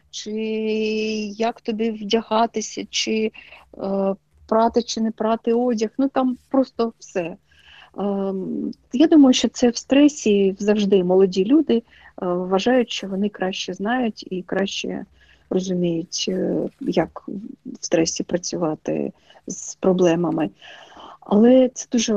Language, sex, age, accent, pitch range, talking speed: Ukrainian, female, 40-59, native, 190-230 Hz, 120 wpm